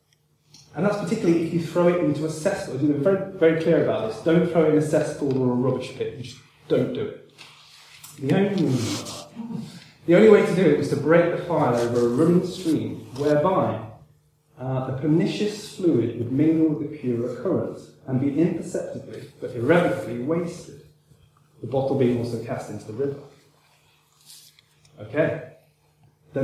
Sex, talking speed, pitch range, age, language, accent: male, 170 wpm, 135-165 Hz, 30-49, English, British